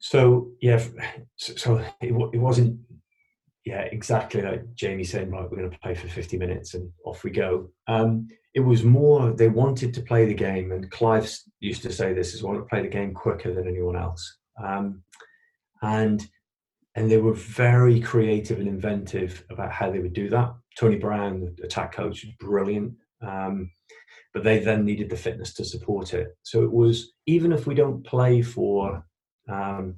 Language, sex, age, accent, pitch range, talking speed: English, male, 30-49, British, 95-120 Hz, 180 wpm